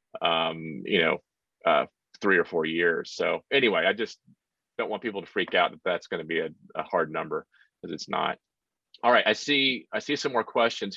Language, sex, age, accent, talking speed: English, male, 30-49, American, 215 wpm